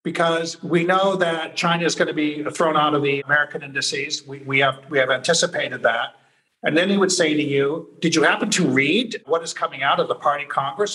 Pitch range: 140-175 Hz